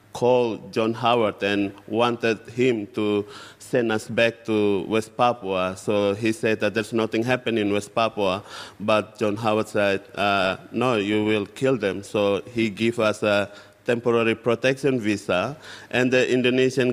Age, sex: 30-49, male